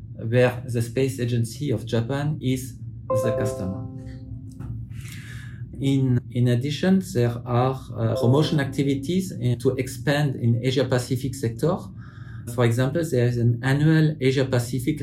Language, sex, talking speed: English, male, 115 wpm